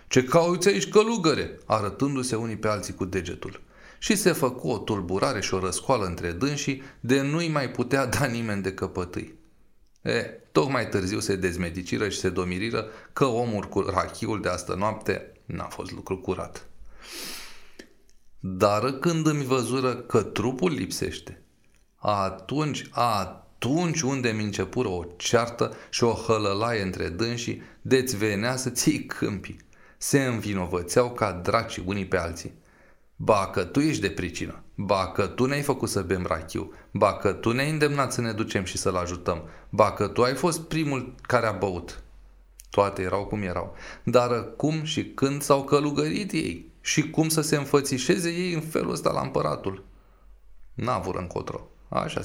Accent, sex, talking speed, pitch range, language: native, male, 150 wpm, 95-135 Hz, Romanian